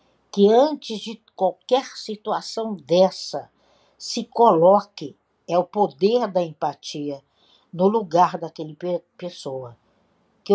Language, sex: Portuguese, female